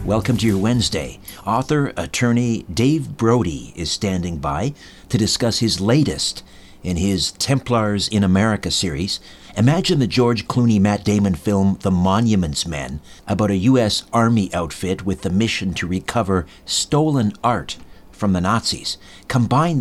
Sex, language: male, English